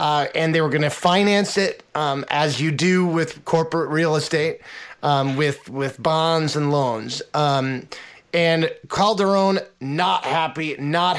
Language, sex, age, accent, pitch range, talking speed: English, male, 30-49, American, 155-190 Hz, 145 wpm